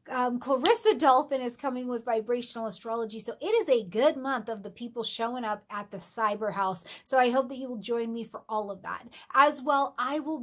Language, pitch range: English, 215-280 Hz